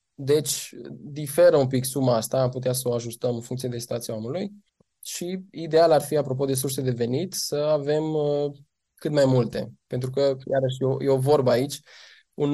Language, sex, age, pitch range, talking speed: Romanian, male, 20-39, 125-155 Hz, 180 wpm